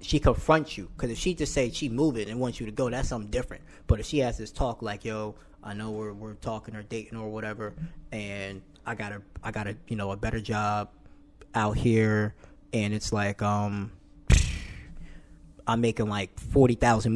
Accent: American